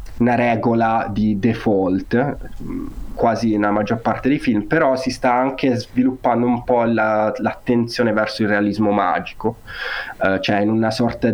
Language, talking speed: Italian, 140 wpm